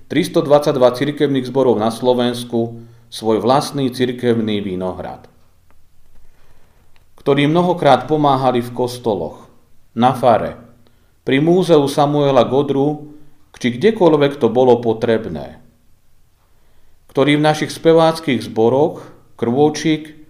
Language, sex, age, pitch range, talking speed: Slovak, male, 40-59, 115-145 Hz, 90 wpm